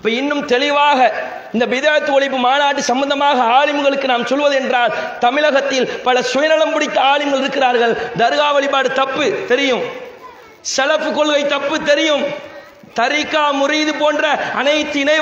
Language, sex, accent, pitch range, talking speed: English, male, Indian, 280-320 Hz, 100 wpm